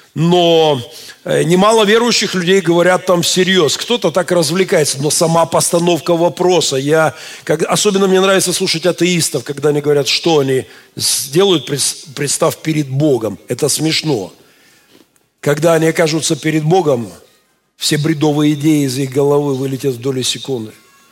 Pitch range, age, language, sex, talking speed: 140-175 Hz, 50-69, Russian, male, 135 wpm